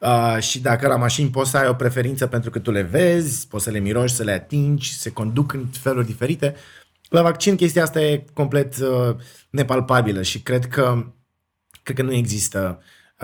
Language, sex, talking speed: Romanian, male, 190 wpm